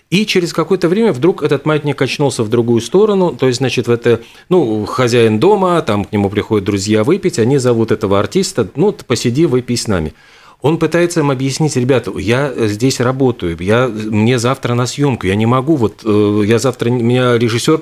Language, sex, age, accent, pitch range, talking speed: Russian, male, 40-59, native, 110-140 Hz, 185 wpm